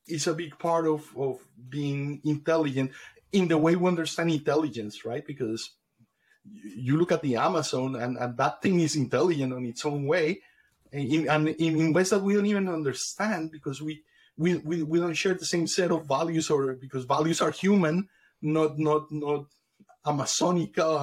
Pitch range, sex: 135-170 Hz, male